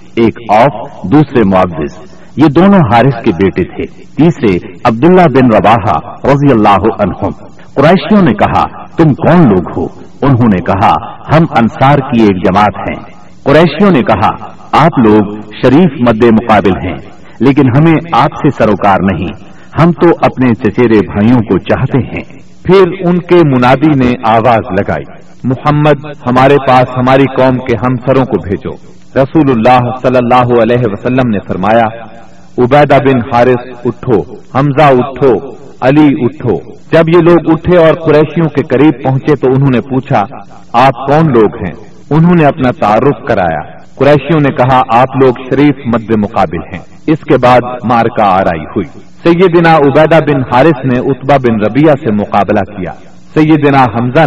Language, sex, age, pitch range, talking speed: Urdu, male, 60-79, 120-150 Hz, 155 wpm